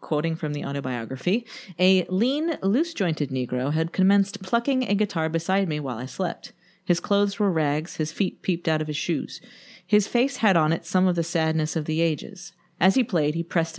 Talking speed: 200 wpm